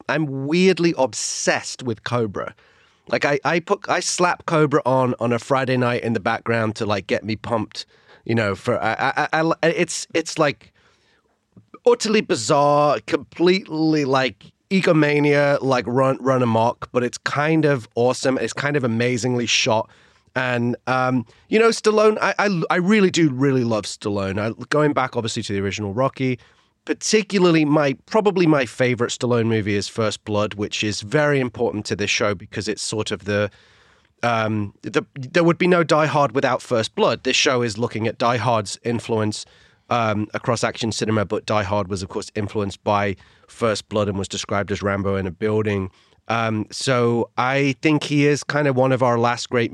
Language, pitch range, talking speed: English, 110-150 Hz, 180 wpm